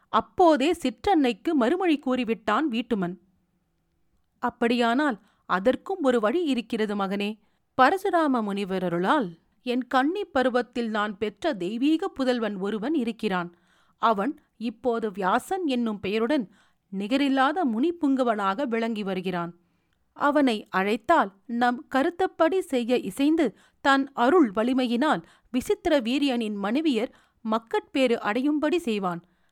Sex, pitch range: female, 215-295 Hz